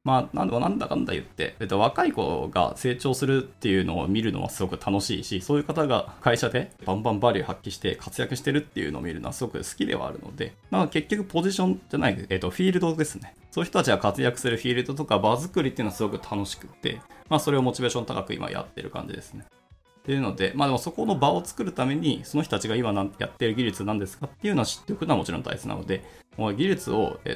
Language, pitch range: Japanese, 100-145 Hz